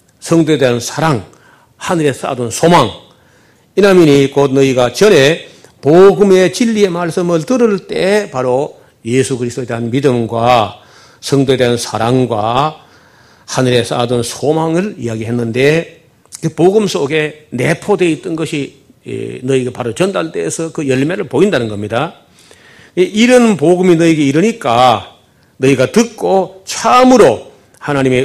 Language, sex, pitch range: Korean, male, 125-180 Hz